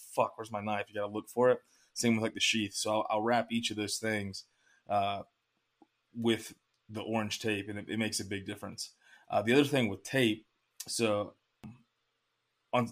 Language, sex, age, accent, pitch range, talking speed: English, male, 20-39, American, 105-115 Hz, 200 wpm